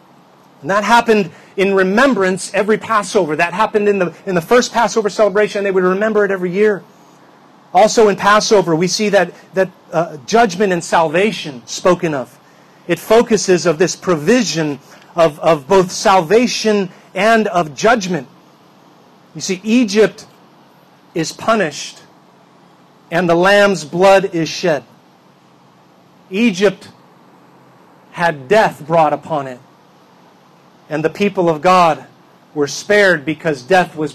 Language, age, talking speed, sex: English, 40-59, 130 wpm, male